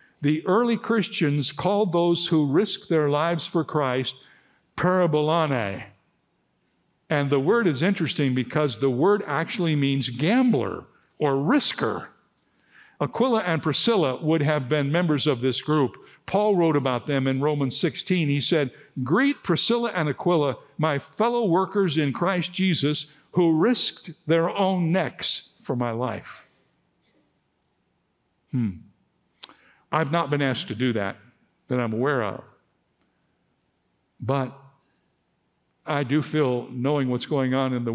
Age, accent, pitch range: 60-79, American, 125-170 Hz